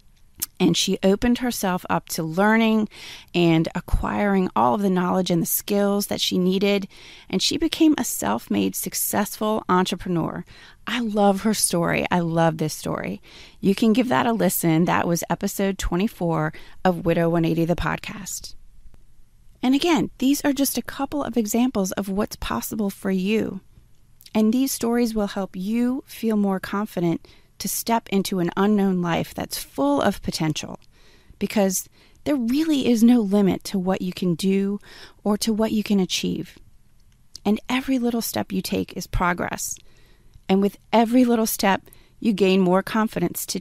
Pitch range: 180-230 Hz